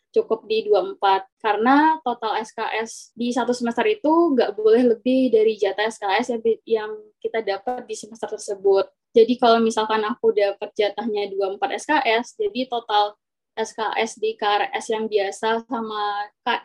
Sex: female